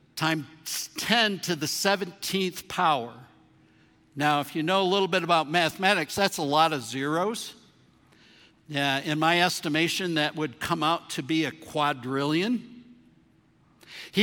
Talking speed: 140 wpm